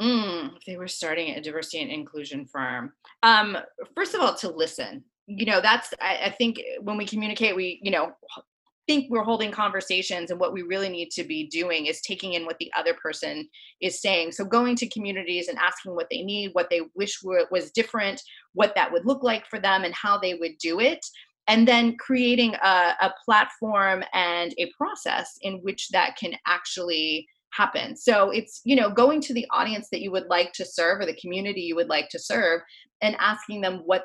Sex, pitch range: female, 175-230 Hz